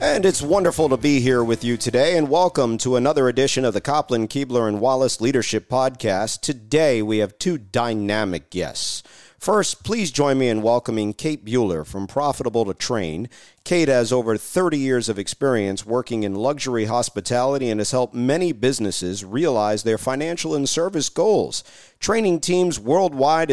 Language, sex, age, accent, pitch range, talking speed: English, male, 50-69, American, 110-145 Hz, 165 wpm